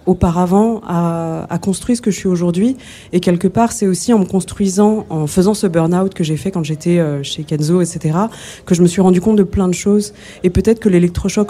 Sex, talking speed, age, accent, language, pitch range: female, 235 wpm, 20-39, French, French, 170-205 Hz